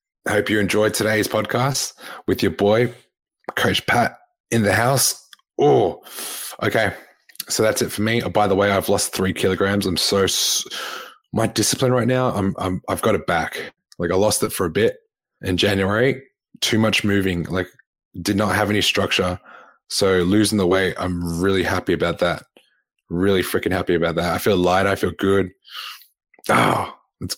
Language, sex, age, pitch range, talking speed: English, male, 20-39, 90-105 Hz, 180 wpm